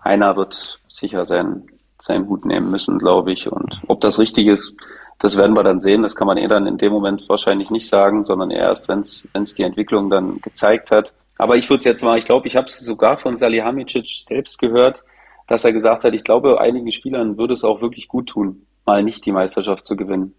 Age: 30-49